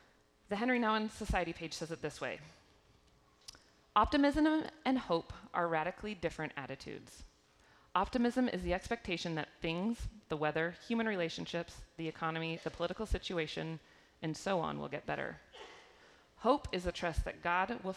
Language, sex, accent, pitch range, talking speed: English, female, American, 150-195 Hz, 145 wpm